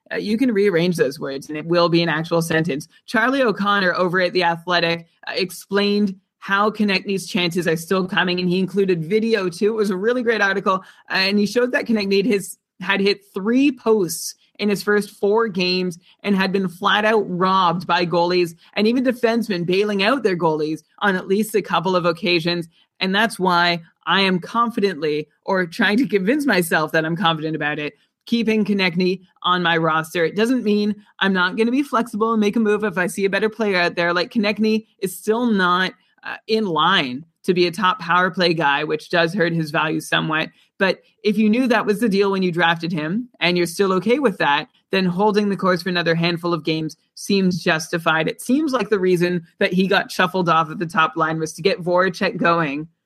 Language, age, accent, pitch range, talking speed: English, 30-49, American, 175-210 Hz, 215 wpm